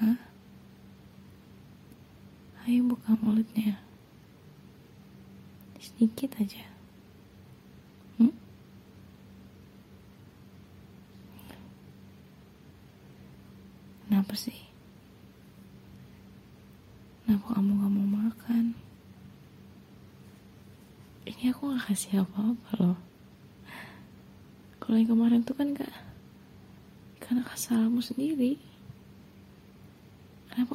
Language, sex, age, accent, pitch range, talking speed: Indonesian, female, 20-39, native, 190-230 Hz, 55 wpm